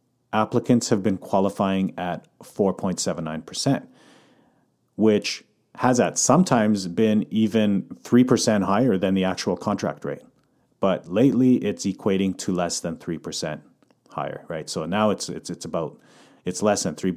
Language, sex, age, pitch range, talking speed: English, male, 40-59, 90-110 Hz, 135 wpm